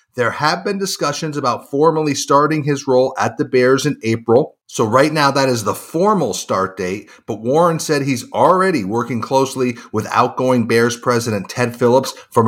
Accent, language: American, English